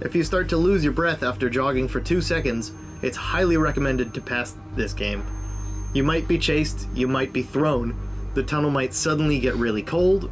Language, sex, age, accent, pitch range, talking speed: English, male, 30-49, American, 115-160 Hz, 200 wpm